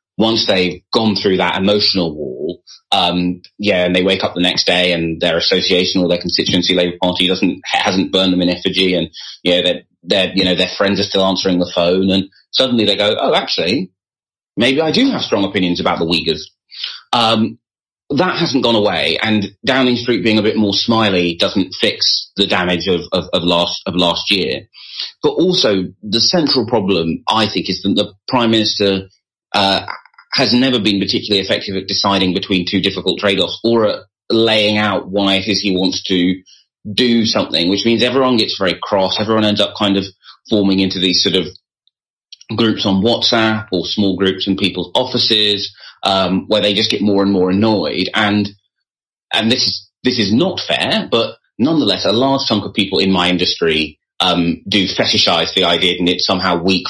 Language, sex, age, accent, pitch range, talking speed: English, male, 30-49, British, 90-110 Hz, 190 wpm